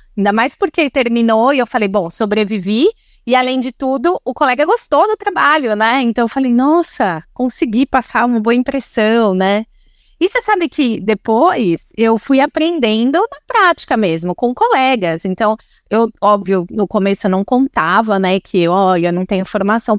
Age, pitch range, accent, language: 20-39, 190-250 Hz, Brazilian, Portuguese